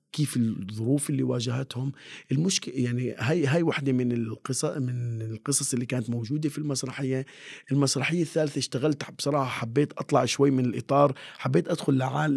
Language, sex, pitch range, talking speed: Arabic, male, 120-145 Hz, 145 wpm